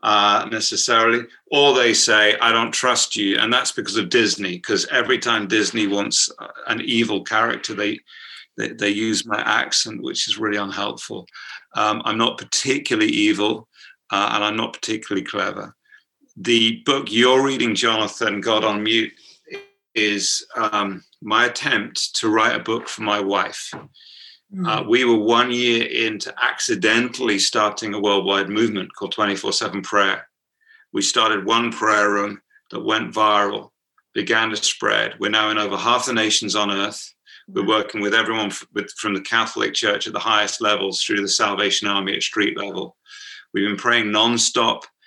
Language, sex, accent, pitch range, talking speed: English, male, British, 100-120 Hz, 160 wpm